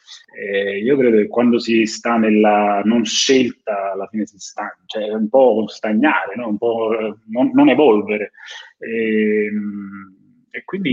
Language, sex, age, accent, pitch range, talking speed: Italian, male, 30-49, native, 105-125 Hz, 150 wpm